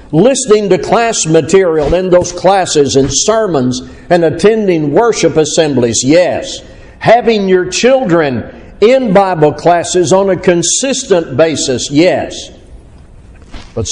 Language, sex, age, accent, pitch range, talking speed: English, male, 60-79, American, 115-185 Hz, 110 wpm